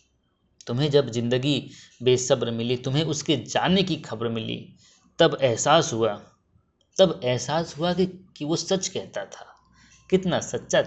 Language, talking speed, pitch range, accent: Hindi, 140 wpm, 125-165 Hz, native